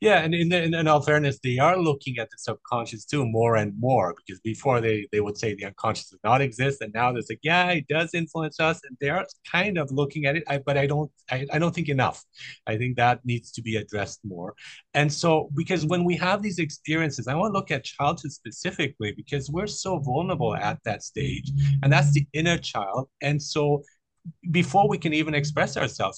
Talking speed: 220 wpm